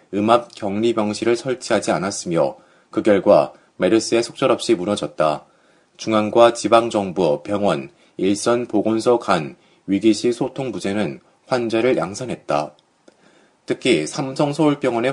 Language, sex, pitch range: Korean, male, 105-130 Hz